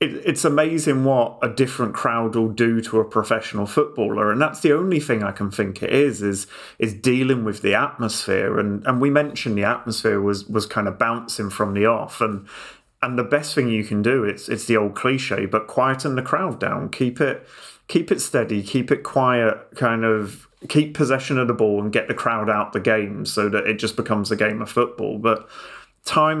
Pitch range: 105-130 Hz